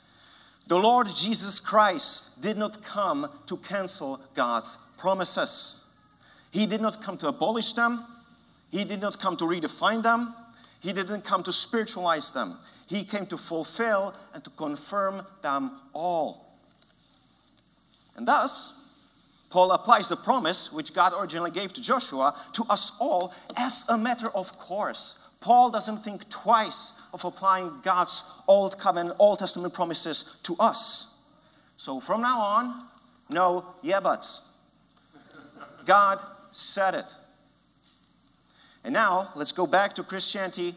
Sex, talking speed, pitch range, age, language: male, 135 wpm, 175-225 Hz, 40-59, English